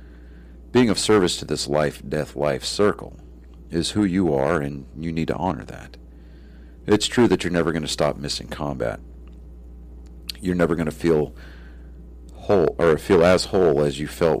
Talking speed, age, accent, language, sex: 165 wpm, 50-69, American, English, male